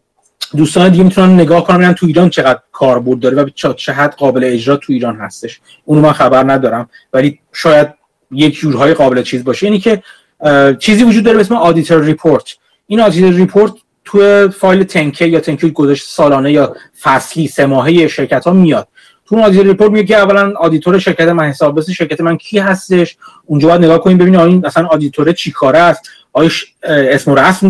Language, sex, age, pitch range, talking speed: Persian, male, 30-49, 150-200 Hz, 170 wpm